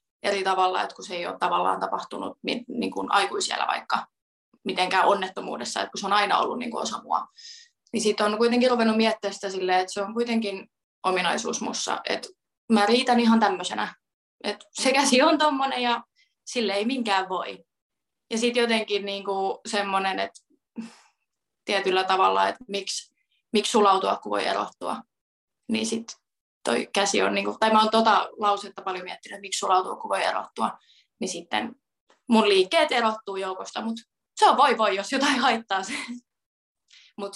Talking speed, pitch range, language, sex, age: 165 wpm, 195-245 Hz, Finnish, female, 20-39